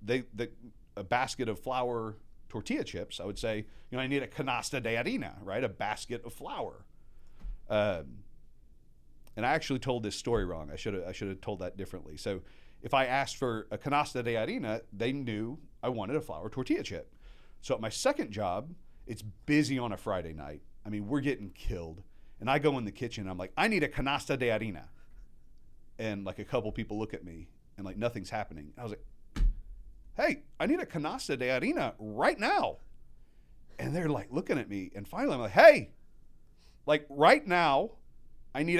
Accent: American